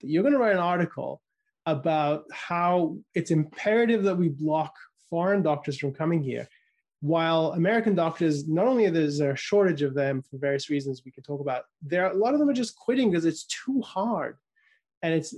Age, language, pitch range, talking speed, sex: 20-39, English, 145-190 Hz, 190 wpm, male